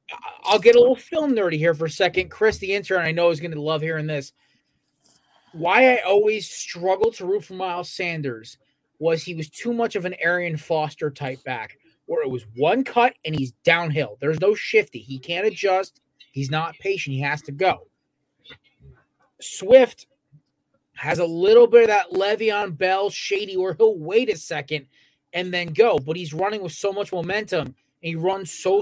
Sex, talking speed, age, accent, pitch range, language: male, 190 wpm, 30-49, American, 155-210 Hz, English